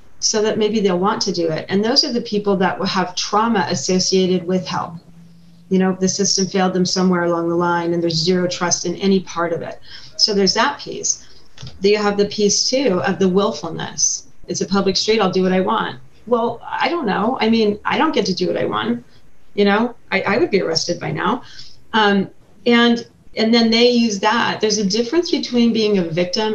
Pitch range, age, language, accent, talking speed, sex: 175-210 Hz, 30-49, English, American, 220 wpm, female